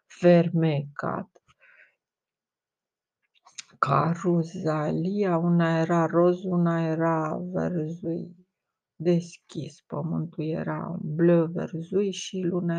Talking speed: 70 wpm